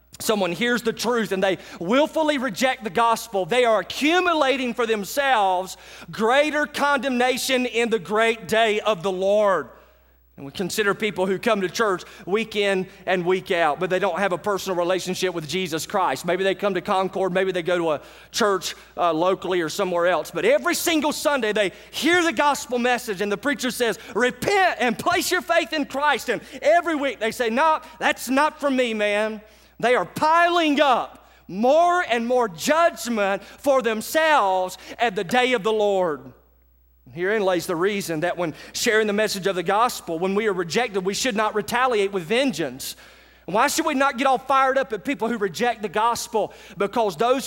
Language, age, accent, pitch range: English, 30-49, American, 190-255 Hz